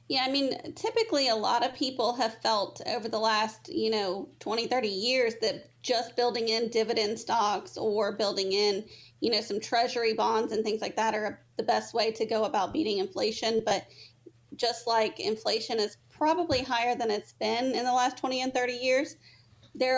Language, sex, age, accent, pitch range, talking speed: English, female, 30-49, American, 210-255 Hz, 190 wpm